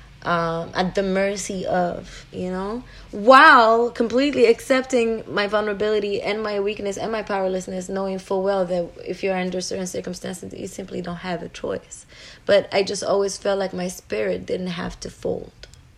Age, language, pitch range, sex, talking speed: 30-49, English, 175-205 Hz, female, 170 wpm